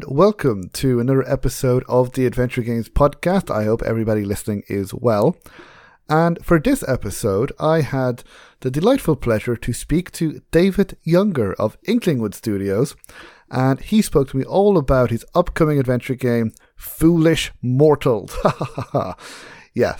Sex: male